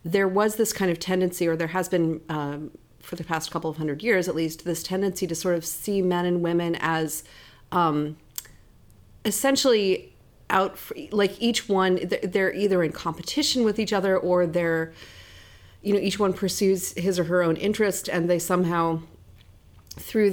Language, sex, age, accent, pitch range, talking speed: English, female, 30-49, American, 160-190 Hz, 175 wpm